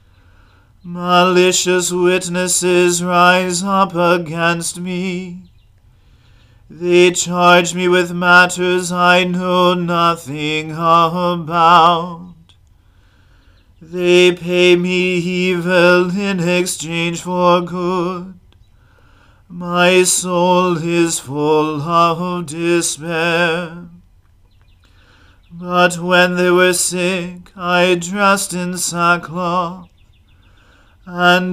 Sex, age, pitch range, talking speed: male, 40-59, 165-180 Hz, 75 wpm